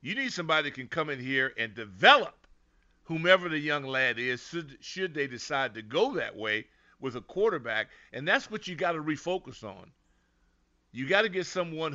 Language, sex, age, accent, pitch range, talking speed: English, male, 50-69, American, 120-155 Hz, 195 wpm